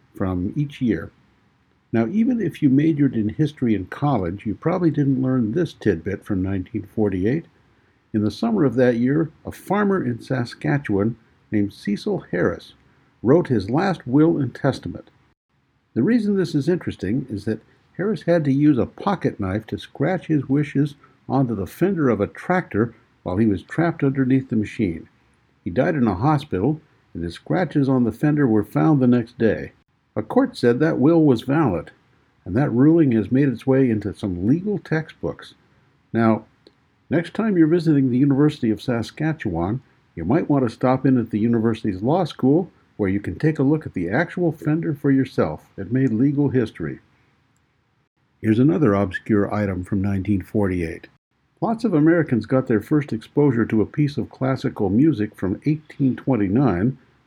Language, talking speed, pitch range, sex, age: English, 170 wpm, 110-150 Hz, male, 60-79